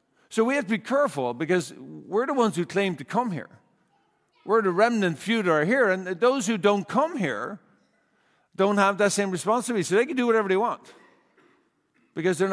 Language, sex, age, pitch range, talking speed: English, male, 50-69, 150-195 Hz, 200 wpm